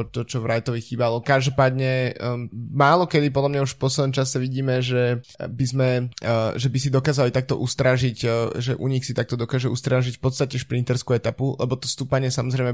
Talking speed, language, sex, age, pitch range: 195 wpm, Slovak, male, 20-39, 120-130 Hz